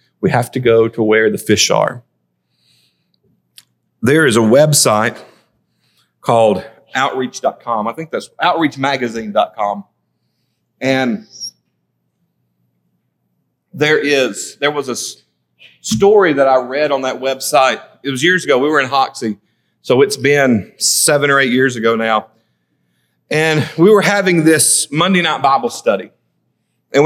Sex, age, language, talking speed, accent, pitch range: male, 40-59, English, 130 wpm, American, 120-185 Hz